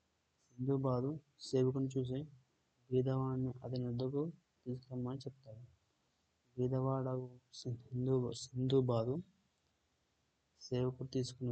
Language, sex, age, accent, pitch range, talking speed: Telugu, male, 20-39, native, 120-130 Hz, 70 wpm